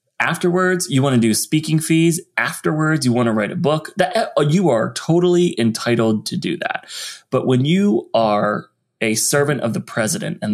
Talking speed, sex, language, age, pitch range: 175 wpm, male, English, 20-39, 115-155 Hz